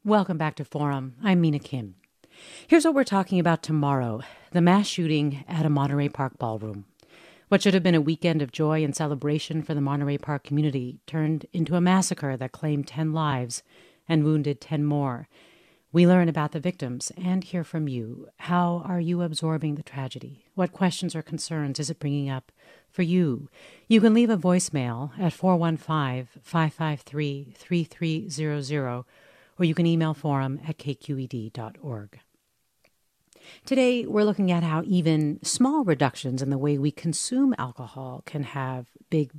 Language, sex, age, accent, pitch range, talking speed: English, female, 40-59, American, 145-180 Hz, 160 wpm